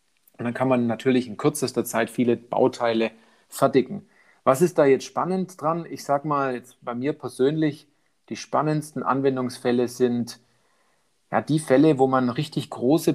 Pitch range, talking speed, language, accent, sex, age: 120-145 Hz, 155 wpm, German, German, male, 40-59